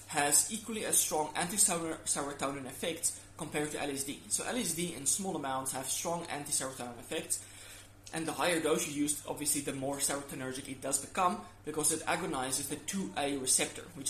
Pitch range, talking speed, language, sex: 130-155 Hz, 160 wpm, English, male